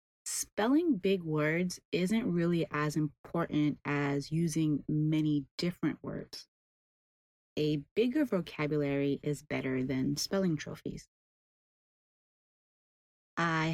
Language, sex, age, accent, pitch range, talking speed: English, female, 30-49, American, 145-170 Hz, 90 wpm